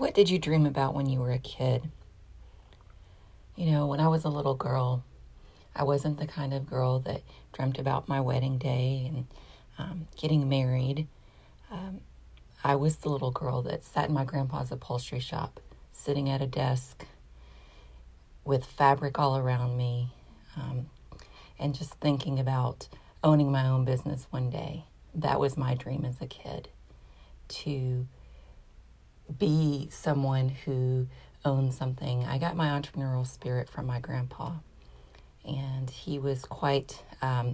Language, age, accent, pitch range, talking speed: English, 40-59, American, 125-150 Hz, 150 wpm